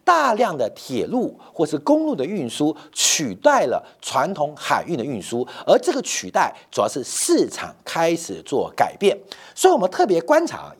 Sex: male